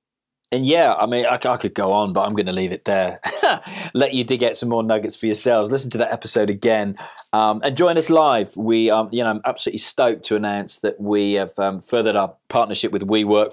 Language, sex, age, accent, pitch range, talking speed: English, male, 20-39, British, 100-115 Hz, 235 wpm